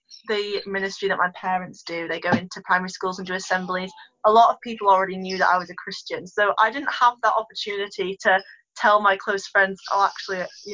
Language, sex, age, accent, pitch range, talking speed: English, female, 20-39, British, 190-220 Hz, 220 wpm